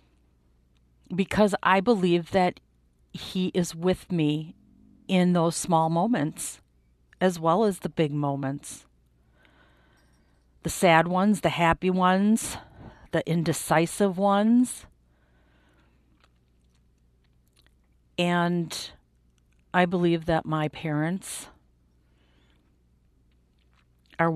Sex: female